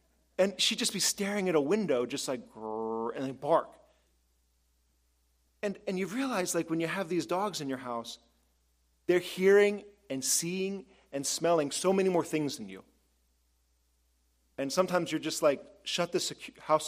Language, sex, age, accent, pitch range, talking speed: English, male, 30-49, American, 120-180 Hz, 170 wpm